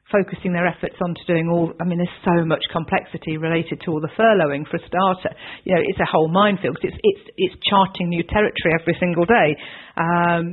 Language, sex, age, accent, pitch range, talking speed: English, female, 50-69, British, 170-210 Hz, 215 wpm